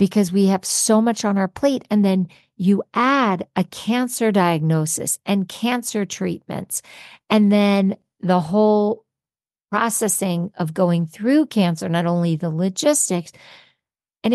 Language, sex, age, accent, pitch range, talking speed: English, female, 50-69, American, 170-210 Hz, 135 wpm